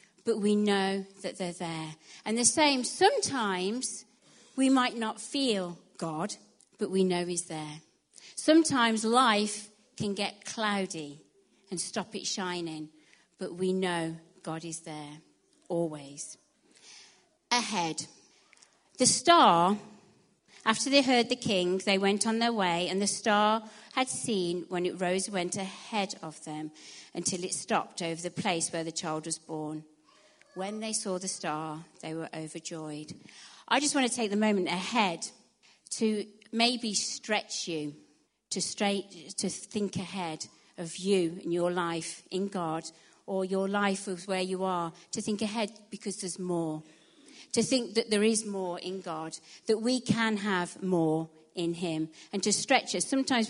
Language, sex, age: English, female, 40-59